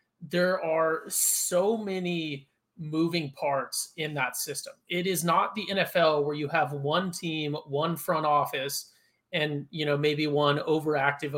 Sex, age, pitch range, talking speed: male, 30-49, 145-170 Hz, 150 wpm